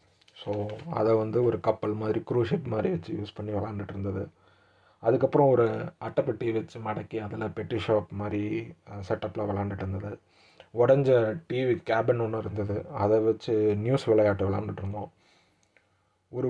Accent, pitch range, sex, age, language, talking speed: native, 110-135 Hz, male, 30-49, Tamil, 135 wpm